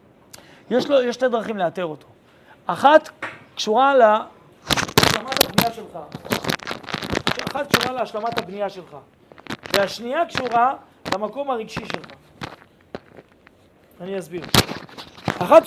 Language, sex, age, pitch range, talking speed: Hebrew, male, 40-59, 200-280 Hz, 95 wpm